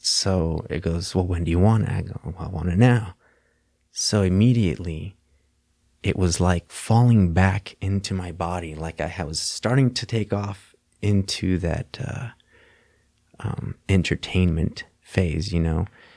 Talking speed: 145 wpm